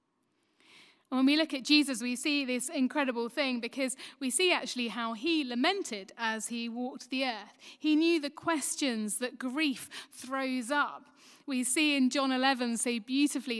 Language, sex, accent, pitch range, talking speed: English, female, British, 230-285 Hz, 165 wpm